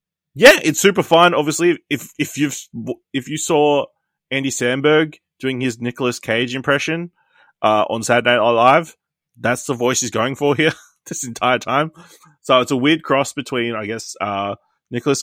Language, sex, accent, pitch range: English, male, Australian, 110-135 Hz